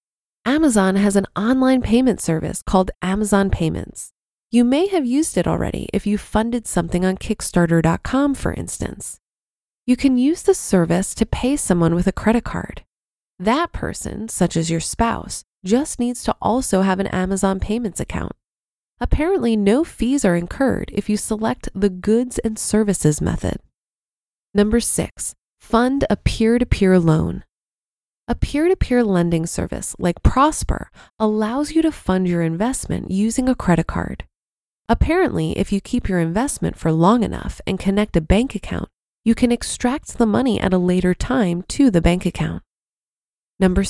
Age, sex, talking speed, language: 20-39, female, 155 wpm, English